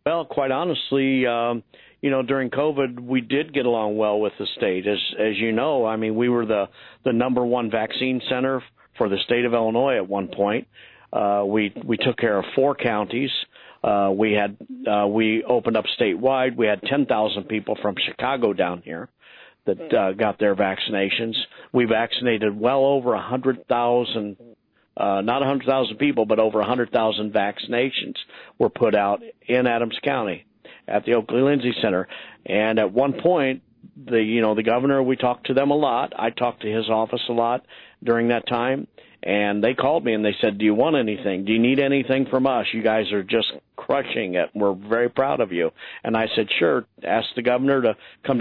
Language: English